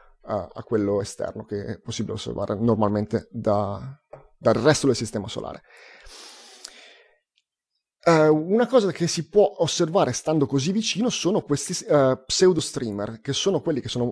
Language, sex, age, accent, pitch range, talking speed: Italian, male, 30-49, native, 115-150 Hz, 130 wpm